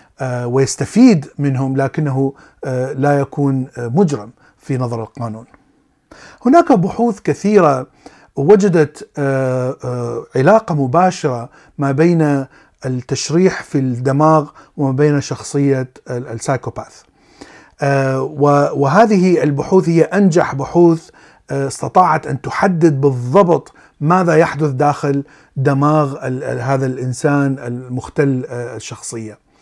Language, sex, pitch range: Arabic, male, 130-165 Hz